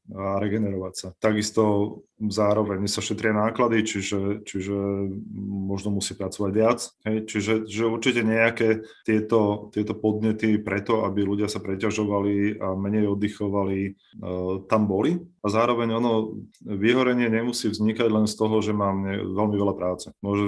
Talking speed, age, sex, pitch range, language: 140 wpm, 30-49, male, 95-110 Hz, Slovak